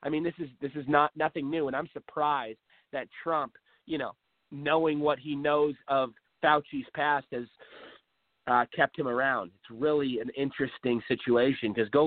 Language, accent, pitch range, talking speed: English, American, 130-180 Hz, 175 wpm